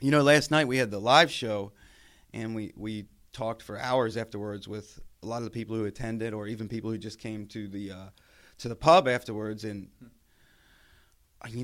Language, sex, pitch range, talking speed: English, male, 105-130 Hz, 195 wpm